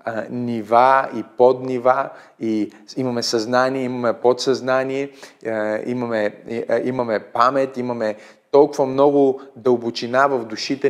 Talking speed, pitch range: 90 wpm, 125-180 Hz